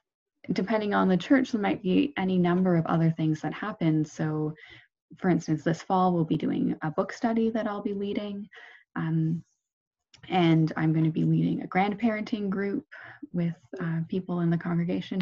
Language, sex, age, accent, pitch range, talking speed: English, female, 20-39, American, 160-215 Hz, 180 wpm